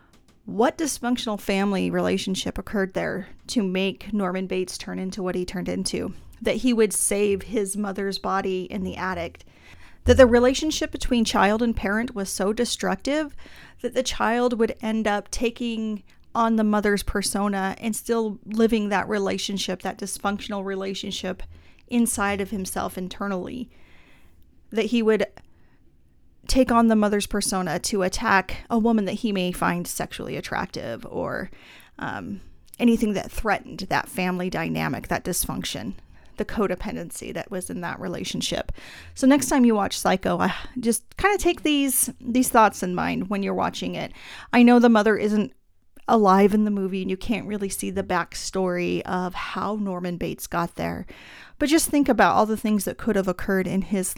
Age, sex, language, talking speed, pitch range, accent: 30-49, female, English, 165 wpm, 190-230 Hz, American